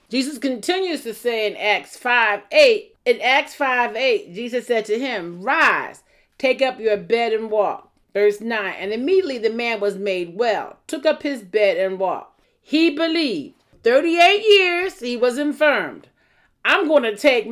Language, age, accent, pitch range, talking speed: English, 40-59, American, 210-295 Hz, 165 wpm